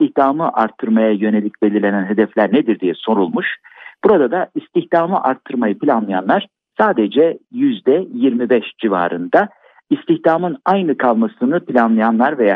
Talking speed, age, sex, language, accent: 105 wpm, 60-79, male, Turkish, native